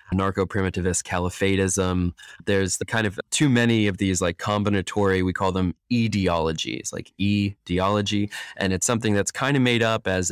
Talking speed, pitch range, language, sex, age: 165 wpm, 90-105 Hz, English, male, 20-39